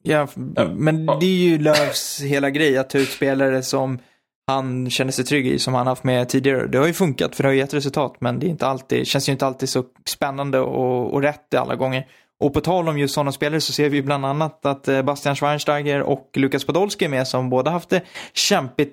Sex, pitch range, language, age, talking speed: male, 135-165 Hz, Swedish, 20-39, 235 wpm